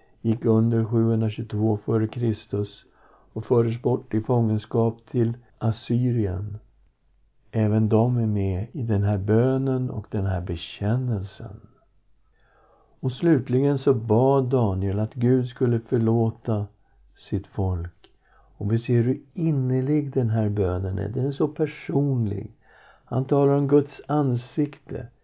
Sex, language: male, Swedish